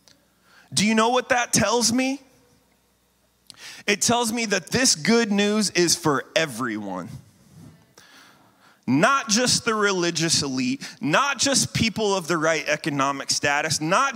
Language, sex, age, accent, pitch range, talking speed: English, male, 30-49, American, 180-240 Hz, 130 wpm